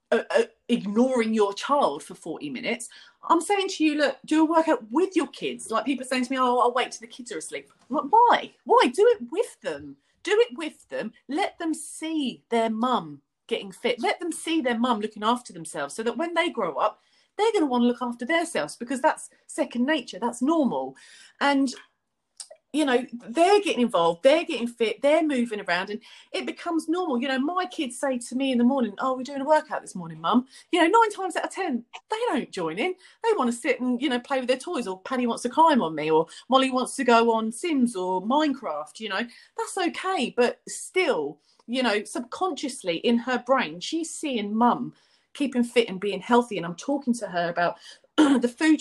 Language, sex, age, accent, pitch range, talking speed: English, female, 30-49, British, 235-325 Hz, 220 wpm